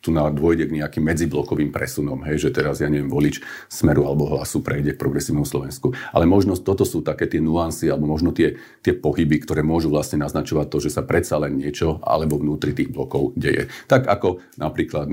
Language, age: Slovak, 40-59